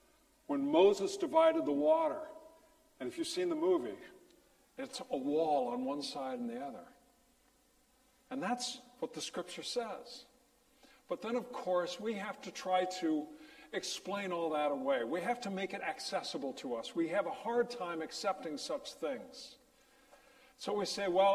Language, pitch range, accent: English, 190-310 Hz, American